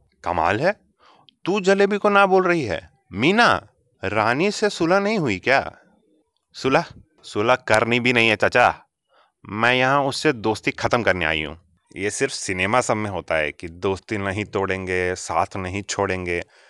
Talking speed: 160 wpm